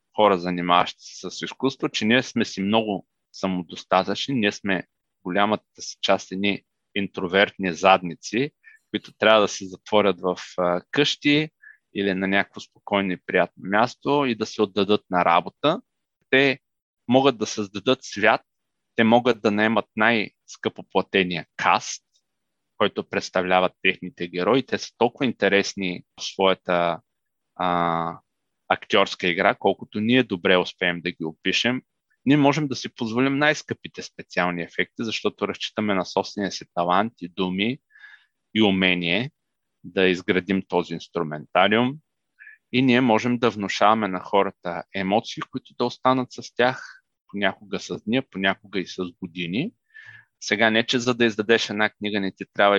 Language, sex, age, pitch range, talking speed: Bulgarian, male, 30-49, 90-120 Hz, 140 wpm